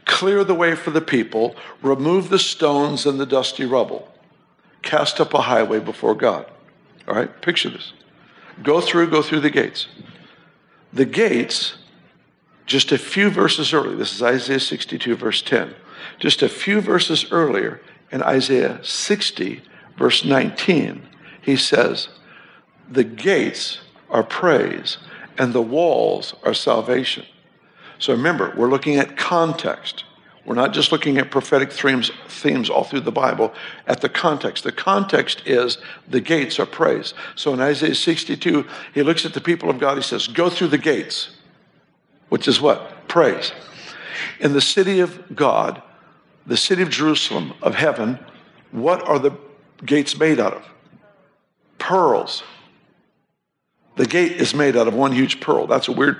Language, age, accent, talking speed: English, 60-79, American, 155 wpm